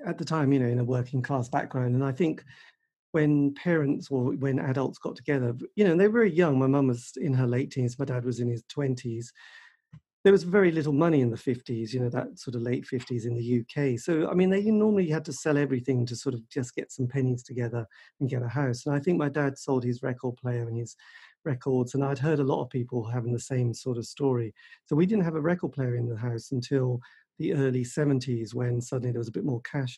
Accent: British